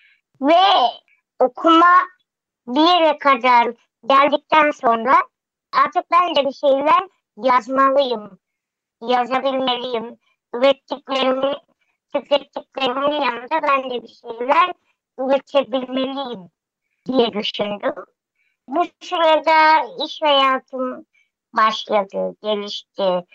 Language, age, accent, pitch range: Turkish, 50-69, American, 230-295 Hz